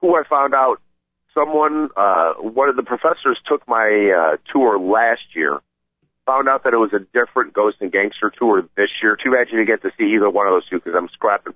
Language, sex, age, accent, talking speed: English, male, 50-69, American, 230 wpm